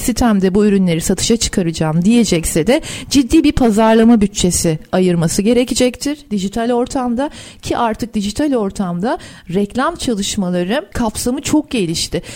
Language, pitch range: Turkish, 195-255 Hz